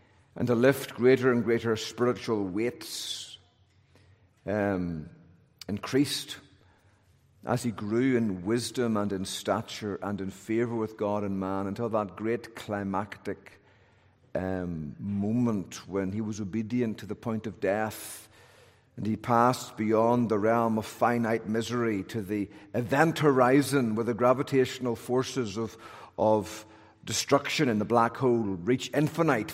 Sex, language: male, English